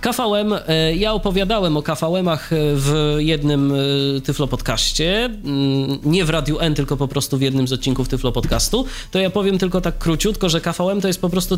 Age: 20-39